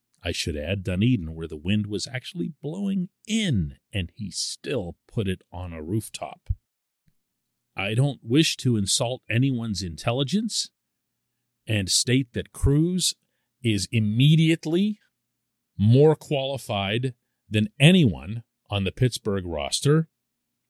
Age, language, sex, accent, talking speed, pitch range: 40-59, English, male, American, 115 wpm, 105-155 Hz